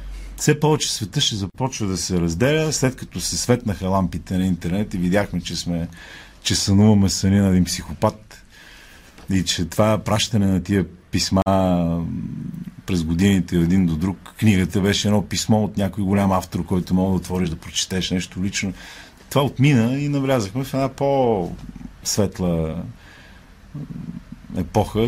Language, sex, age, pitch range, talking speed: Bulgarian, male, 50-69, 85-110 Hz, 145 wpm